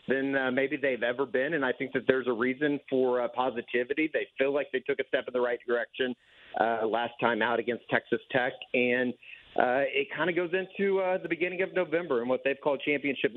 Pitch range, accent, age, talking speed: 125-170 Hz, American, 40-59, 230 wpm